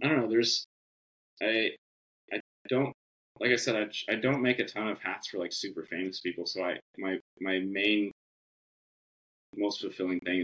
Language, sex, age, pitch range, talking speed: English, male, 20-39, 70-110 Hz, 180 wpm